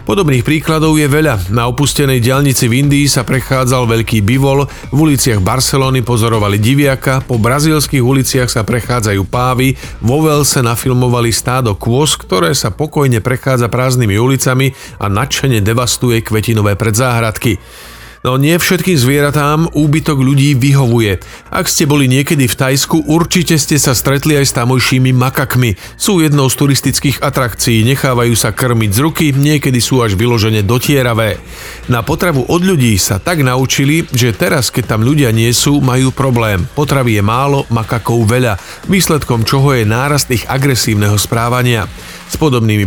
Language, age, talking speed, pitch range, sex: Slovak, 40-59, 150 wpm, 115-140 Hz, male